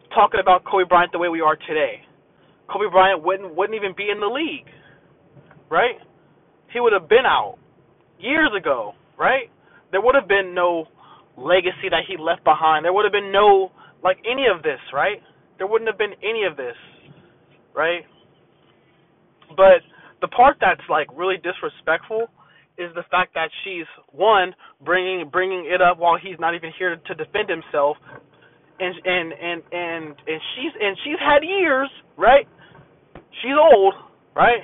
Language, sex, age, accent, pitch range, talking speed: English, male, 20-39, American, 175-270 Hz, 165 wpm